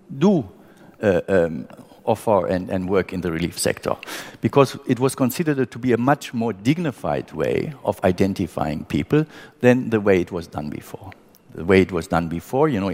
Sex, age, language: male, 50-69, English